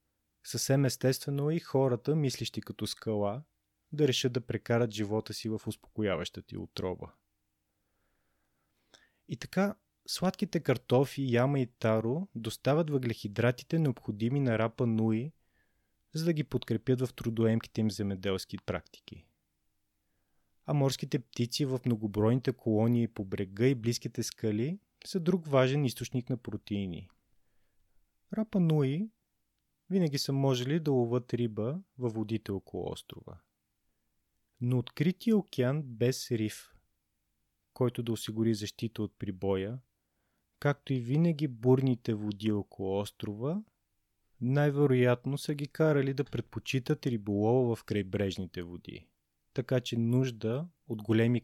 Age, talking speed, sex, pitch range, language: 20-39, 115 wpm, male, 100-135 Hz, Bulgarian